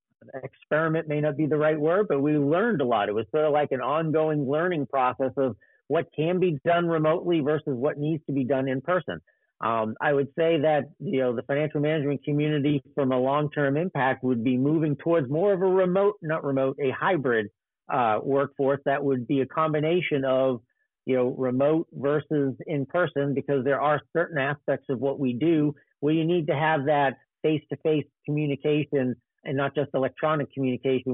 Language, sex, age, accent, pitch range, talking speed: English, male, 50-69, American, 130-155 Hz, 190 wpm